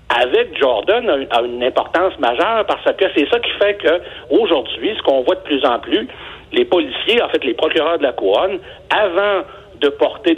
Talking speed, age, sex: 190 wpm, 60-79, male